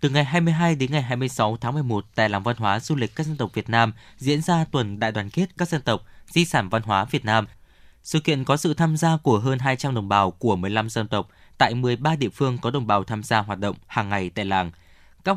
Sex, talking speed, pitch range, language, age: male, 255 wpm, 105-150 Hz, Vietnamese, 20-39